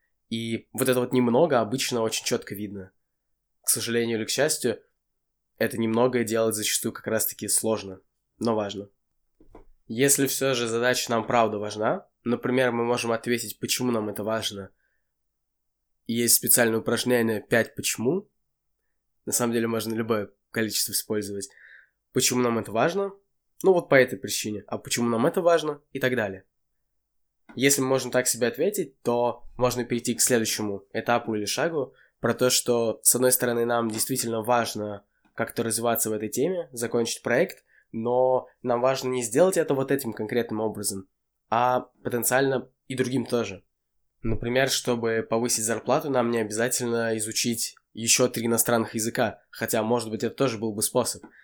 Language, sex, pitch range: Russian, male, 110-125 Hz